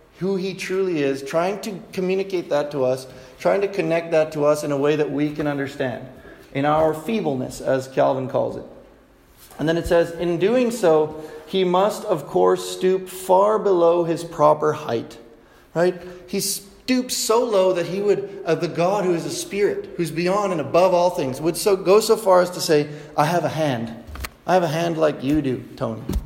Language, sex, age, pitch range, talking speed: English, male, 30-49, 140-180 Hz, 200 wpm